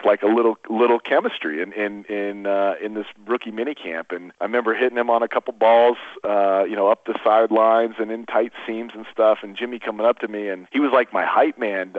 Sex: male